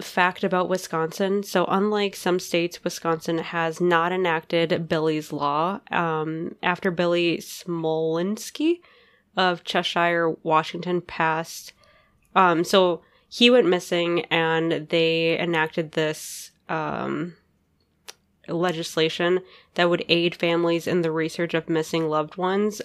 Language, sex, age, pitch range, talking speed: English, female, 10-29, 160-180 Hz, 115 wpm